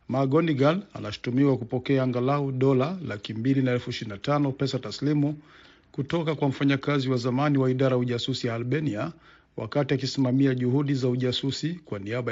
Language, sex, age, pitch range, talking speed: Swahili, male, 50-69, 125-145 Hz, 140 wpm